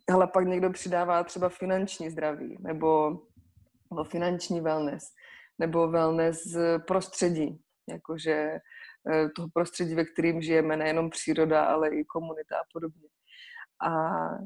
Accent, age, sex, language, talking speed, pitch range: native, 20-39, female, Czech, 115 wpm, 160-180 Hz